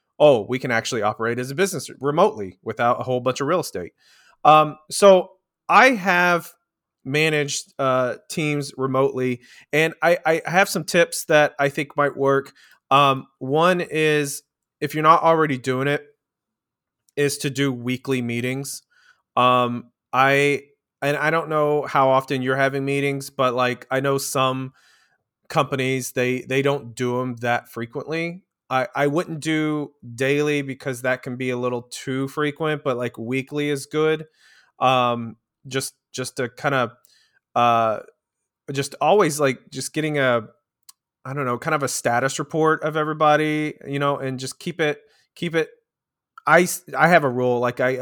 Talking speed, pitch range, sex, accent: 160 wpm, 130-155 Hz, male, American